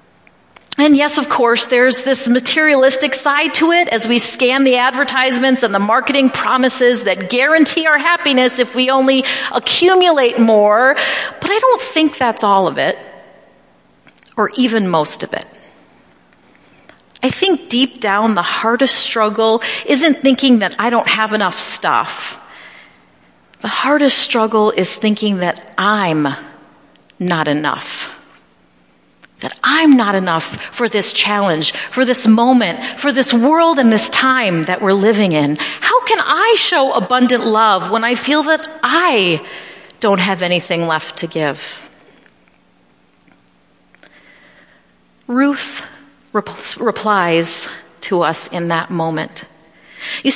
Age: 40-59